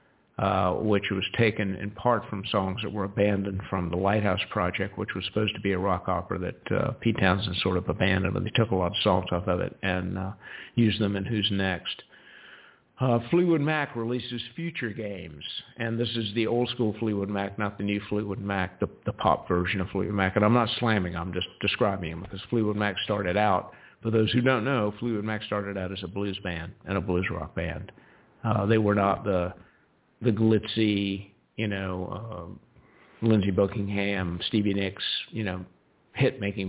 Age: 50-69